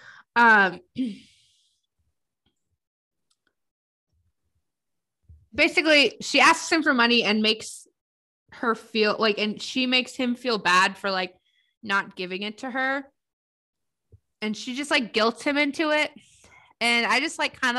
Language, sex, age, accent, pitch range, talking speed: English, female, 20-39, American, 190-225 Hz, 130 wpm